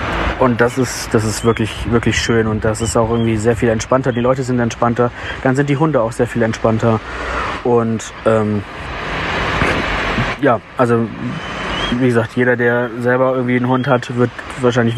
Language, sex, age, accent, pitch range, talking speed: German, male, 20-39, German, 115-130 Hz, 170 wpm